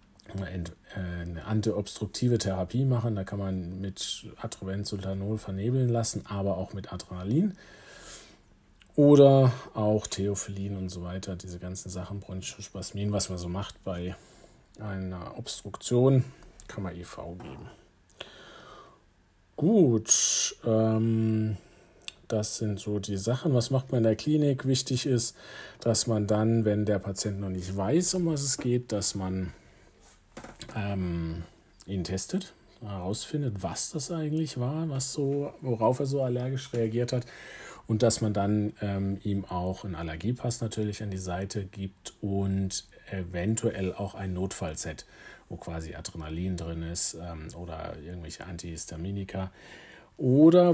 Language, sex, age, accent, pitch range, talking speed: German, male, 40-59, German, 95-120 Hz, 130 wpm